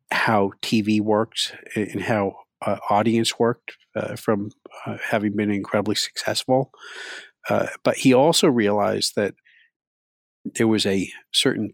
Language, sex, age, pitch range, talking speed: English, male, 50-69, 100-115 Hz, 130 wpm